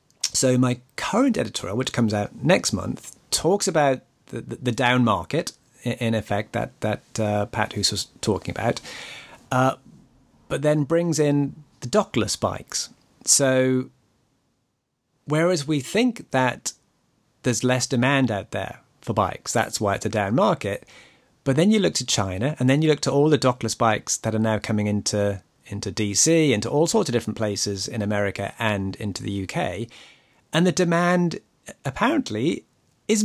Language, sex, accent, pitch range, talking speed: English, male, British, 110-150 Hz, 160 wpm